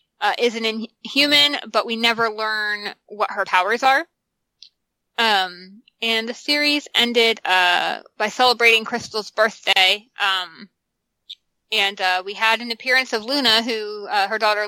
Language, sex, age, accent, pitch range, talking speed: English, female, 20-39, American, 185-225 Hz, 140 wpm